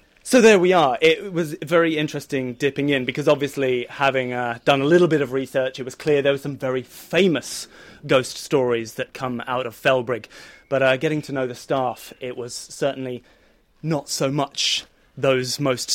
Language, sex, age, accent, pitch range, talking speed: English, male, 30-49, British, 125-155 Hz, 190 wpm